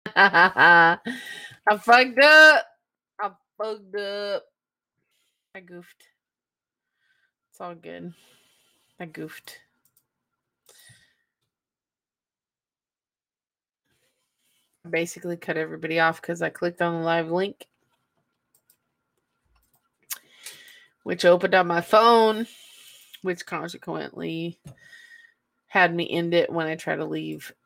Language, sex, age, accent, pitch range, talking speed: English, female, 30-49, American, 170-280 Hz, 85 wpm